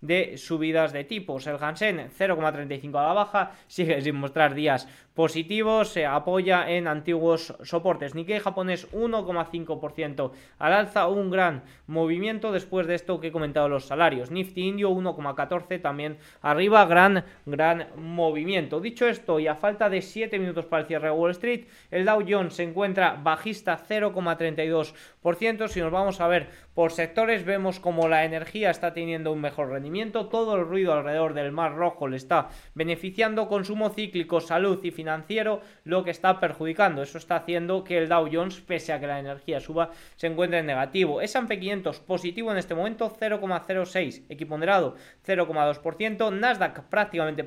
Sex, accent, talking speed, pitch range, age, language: male, Spanish, 165 wpm, 160-195 Hz, 20-39, Spanish